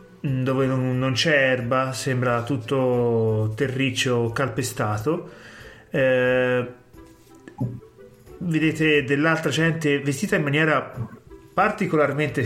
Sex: male